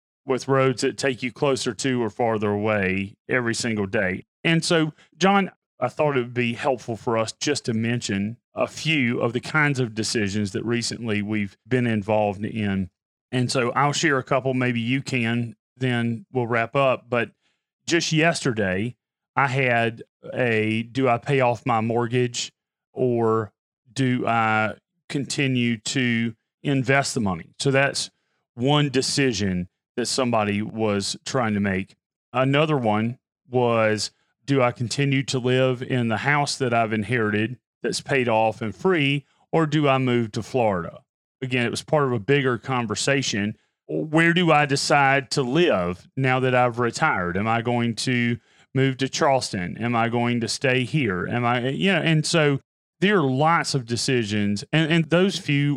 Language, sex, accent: English, male, American